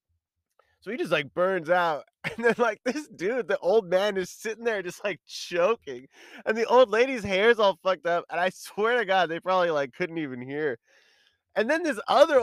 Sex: male